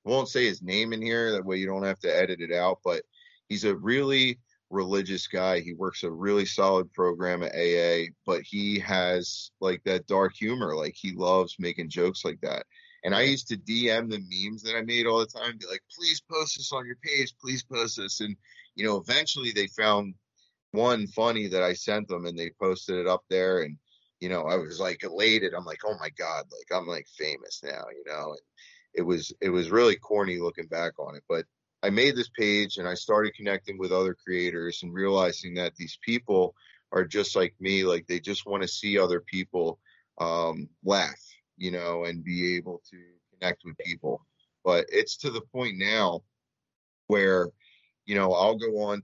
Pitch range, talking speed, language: 90-115 Hz, 205 wpm, English